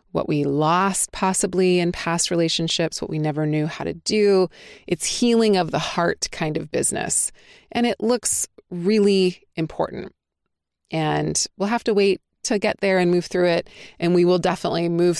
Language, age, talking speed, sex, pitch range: English, 30-49, 175 wpm, female, 160-210 Hz